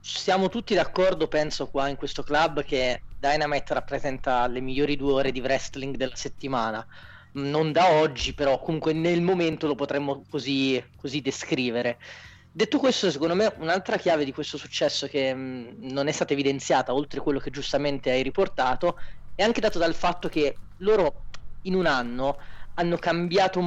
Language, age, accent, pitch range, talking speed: Italian, 30-49, native, 130-165 Hz, 160 wpm